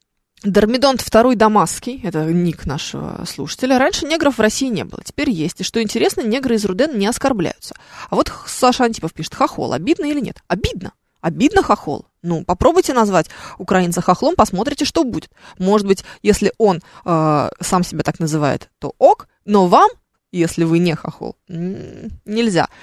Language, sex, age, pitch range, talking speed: Russian, female, 20-39, 175-245 Hz, 160 wpm